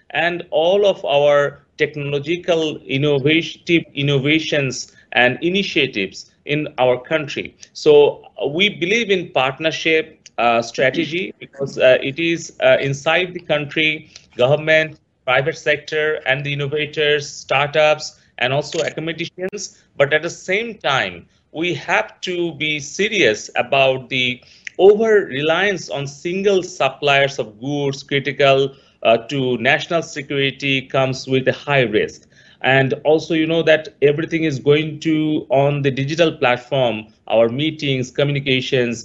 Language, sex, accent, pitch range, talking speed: English, male, Indian, 130-160 Hz, 125 wpm